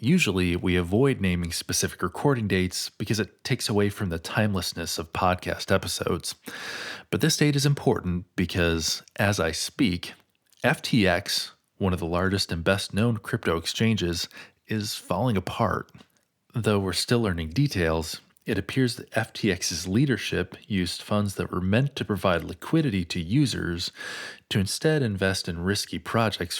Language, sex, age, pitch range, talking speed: English, male, 30-49, 90-110 Hz, 145 wpm